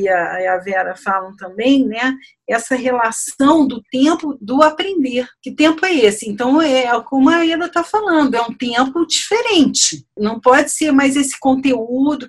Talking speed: 160 wpm